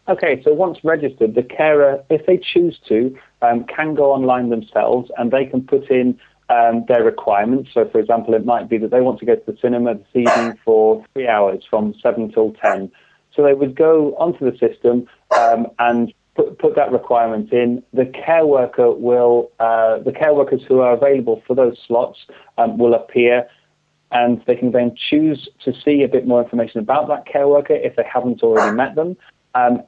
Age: 30-49